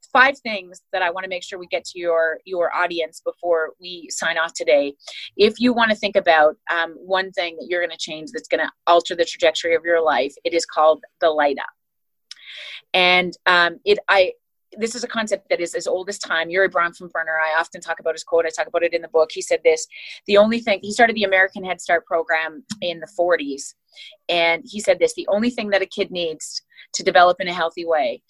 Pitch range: 165-220 Hz